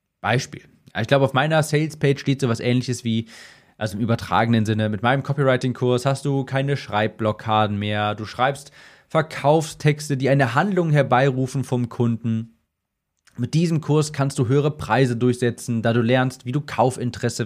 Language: German